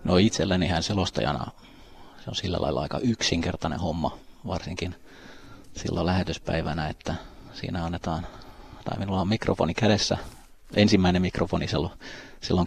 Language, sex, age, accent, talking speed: Finnish, male, 30-49, native, 120 wpm